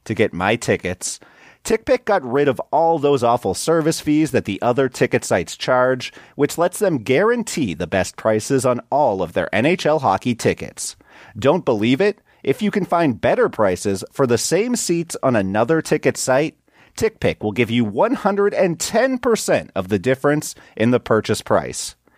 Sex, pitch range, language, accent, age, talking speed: male, 110-165 Hz, English, American, 30-49, 170 wpm